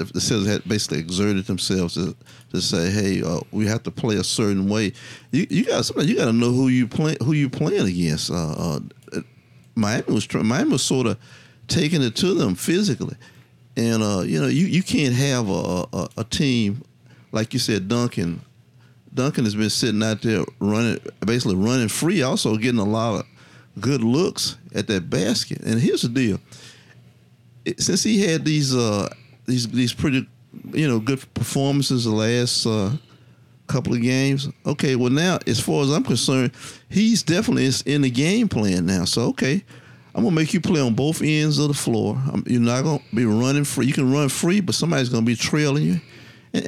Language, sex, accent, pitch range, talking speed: English, male, American, 115-150 Hz, 195 wpm